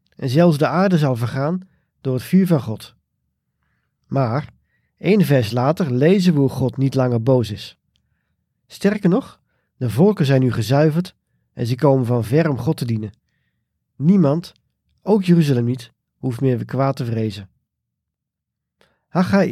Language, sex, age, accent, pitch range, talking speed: Dutch, male, 40-59, Dutch, 120-165 Hz, 155 wpm